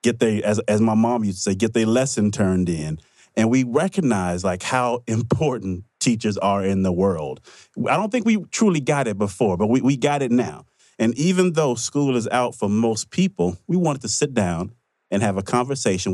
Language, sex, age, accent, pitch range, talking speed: English, male, 30-49, American, 100-125 Hz, 210 wpm